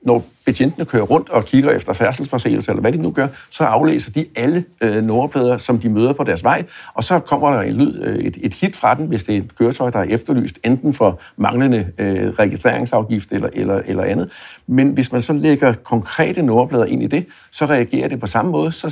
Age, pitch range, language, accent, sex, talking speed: 60-79, 110-135 Hz, Danish, native, male, 205 wpm